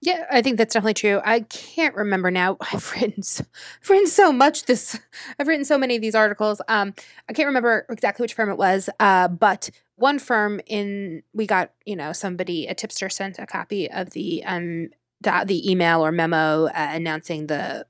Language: English